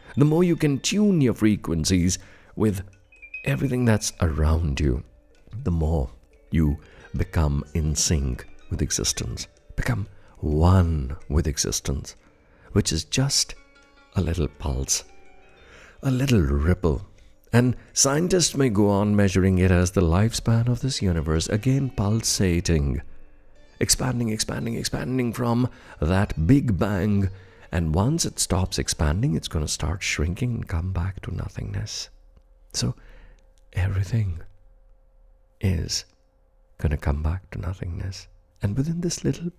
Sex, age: male, 60-79